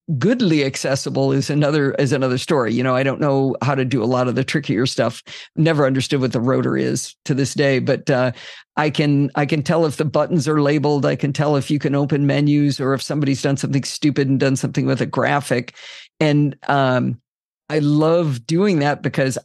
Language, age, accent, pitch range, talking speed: English, 50-69, American, 135-160 Hz, 215 wpm